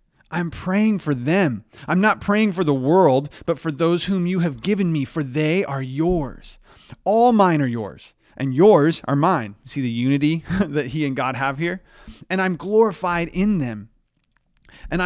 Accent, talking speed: American, 180 wpm